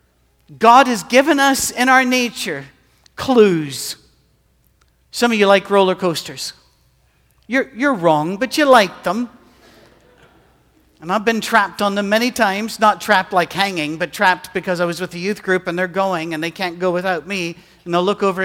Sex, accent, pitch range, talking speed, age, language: male, American, 175-240 Hz, 180 wpm, 50-69, English